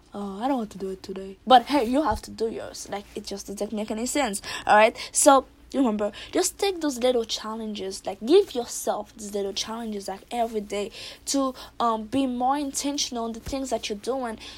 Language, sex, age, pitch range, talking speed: English, female, 20-39, 215-270 Hz, 215 wpm